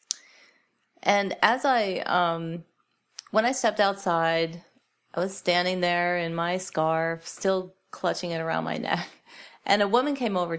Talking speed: 145 wpm